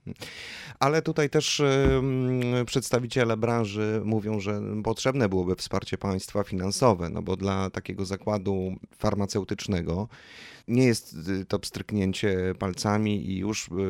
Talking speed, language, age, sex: 110 wpm, Polish, 30-49, male